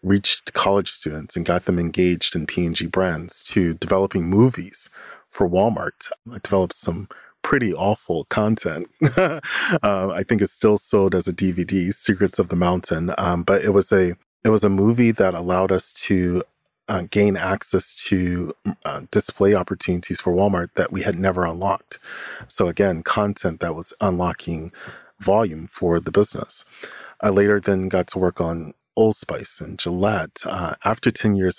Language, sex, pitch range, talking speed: English, male, 85-100 Hz, 165 wpm